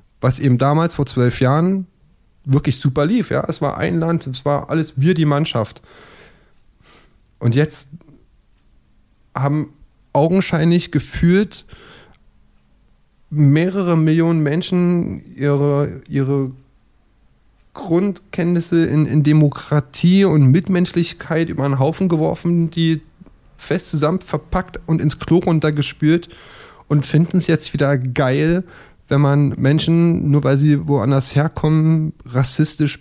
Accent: German